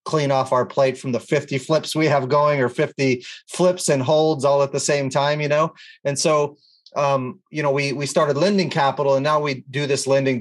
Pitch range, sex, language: 120-145 Hz, male, English